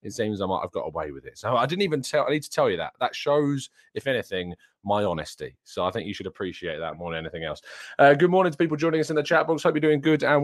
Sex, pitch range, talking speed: male, 110-160 Hz, 305 wpm